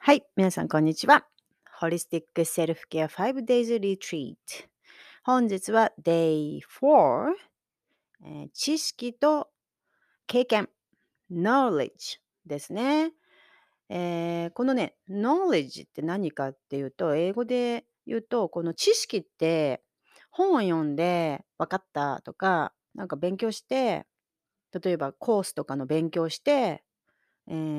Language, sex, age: Japanese, female, 40-59